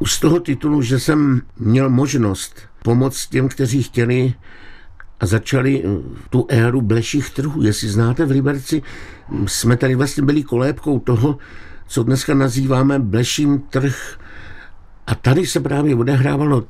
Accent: native